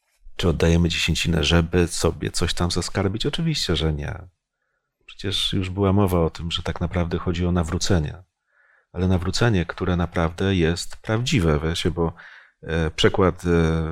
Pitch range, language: 85-100 Hz, Polish